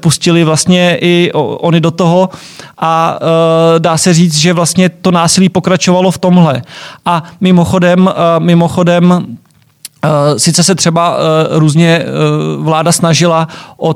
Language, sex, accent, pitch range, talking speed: Czech, male, native, 165-180 Hz, 115 wpm